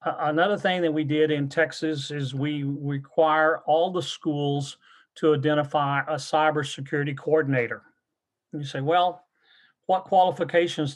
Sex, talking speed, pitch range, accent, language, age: male, 130 wpm, 145-170 Hz, American, English, 40-59